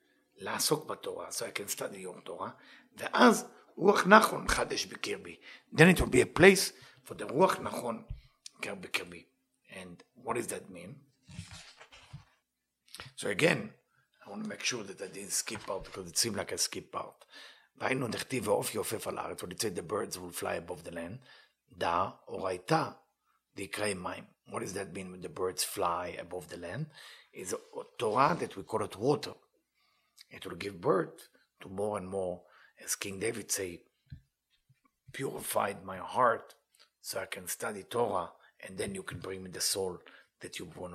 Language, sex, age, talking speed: English, male, 60-79, 140 wpm